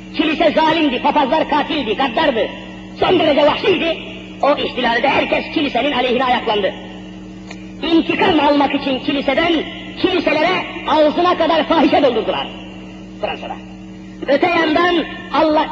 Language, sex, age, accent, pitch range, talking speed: Turkish, female, 40-59, native, 245-335 Hz, 105 wpm